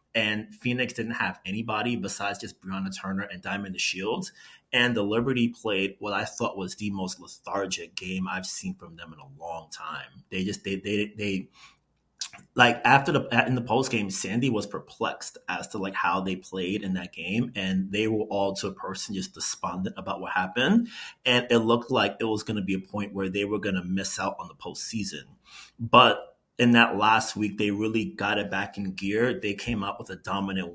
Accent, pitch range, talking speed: American, 95-115 Hz, 210 wpm